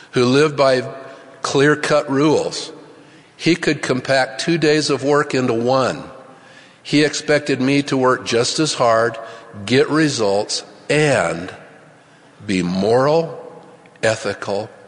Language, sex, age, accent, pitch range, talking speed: English, male, 50-69, American, 115-150 Hz, 115 wpm